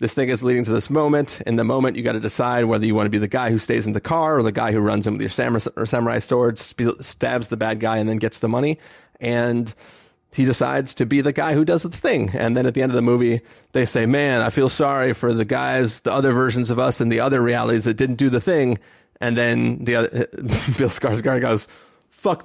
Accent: American